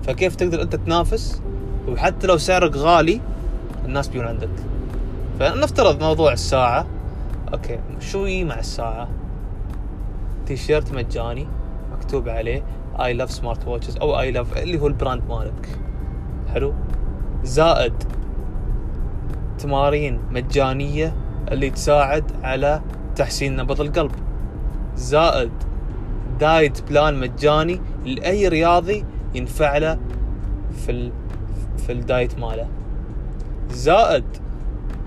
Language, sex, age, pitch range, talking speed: Arabic, male, 20-39, 105-145 Hz, 95 wpm